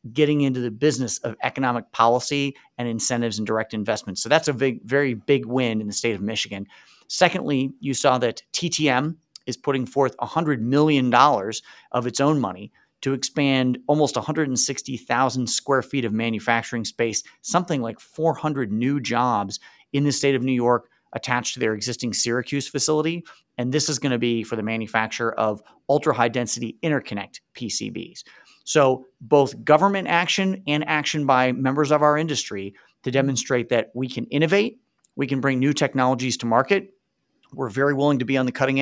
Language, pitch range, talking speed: English, 120-150 Hz, 170 wpm